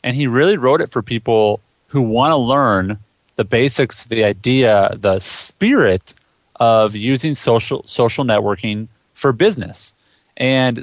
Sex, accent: male, American